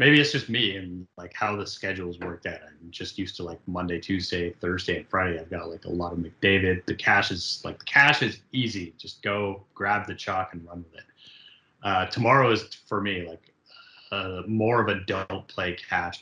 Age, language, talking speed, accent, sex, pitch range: 30-49, English, 210 wpm, American, male, 90-110 Hz